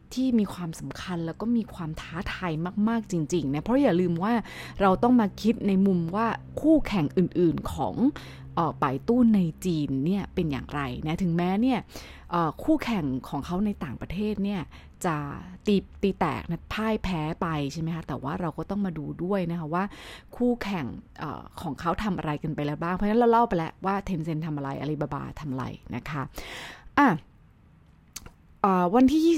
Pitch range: 160-225 Hz